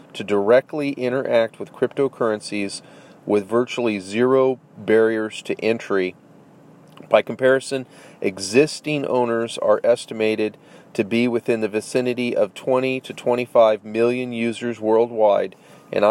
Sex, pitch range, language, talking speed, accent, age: male, 105-125 Hz, English, 110 wpm, American, 30-49